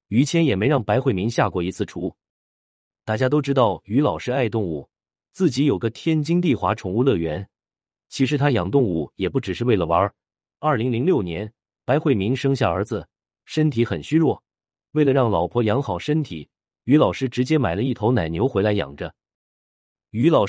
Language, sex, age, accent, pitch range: Chinese, male, 30-49, native, 95-135 Hz